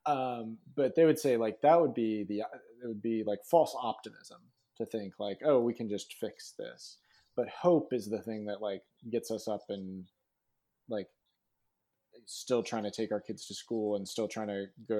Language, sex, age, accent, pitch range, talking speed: English, male, 30-49, American, 105-125 Hz, 200 wpm